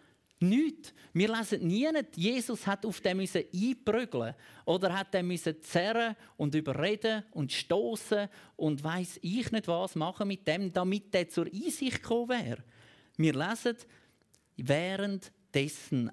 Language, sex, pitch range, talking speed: German, male, 155-220 Hz, 130 wpm